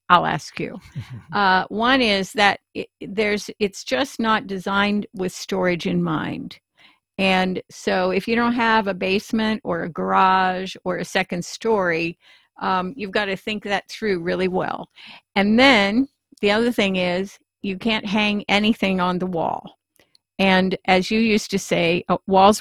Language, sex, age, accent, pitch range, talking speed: English, female, 50-69, American, 180-210 Hz, 160 wpm